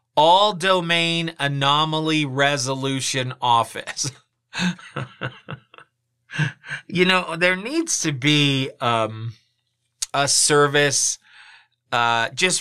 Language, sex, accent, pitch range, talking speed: English, male, American, 125-165 Hz, 75 wpm